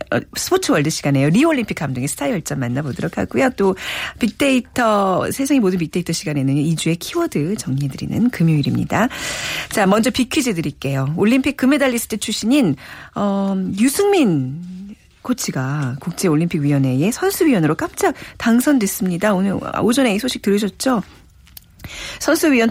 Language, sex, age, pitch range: Korean, female, 40-59, 160-255 Hz